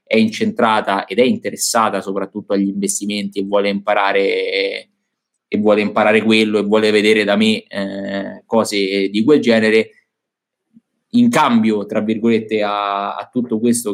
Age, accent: 20-39, native